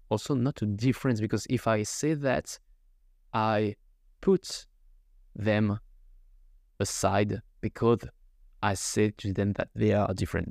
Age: 20-39